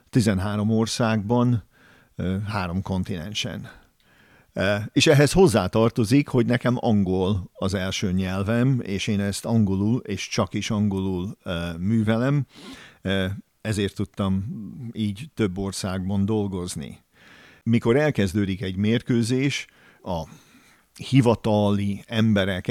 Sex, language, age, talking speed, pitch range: male, Hungarian, 50-69, 95 wpm, 95-115 Hz